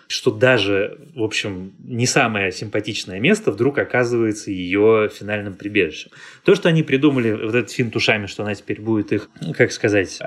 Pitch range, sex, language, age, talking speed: 105-130 Hz, male, Russian, 20-39, 165 wpm